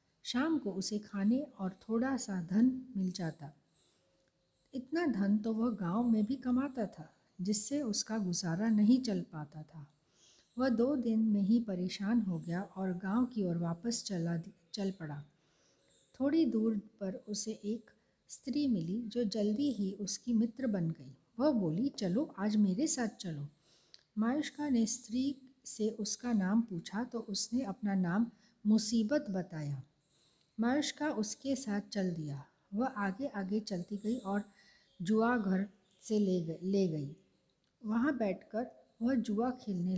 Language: Hindi